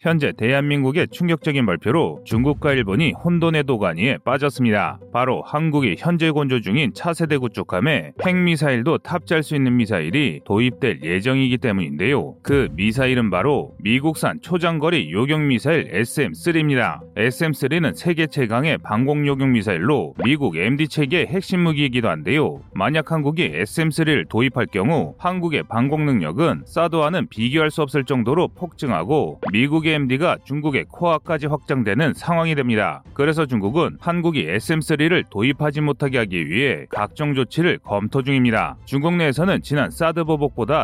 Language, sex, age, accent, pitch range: Korean, male, 30-49, native, 130-165 Hz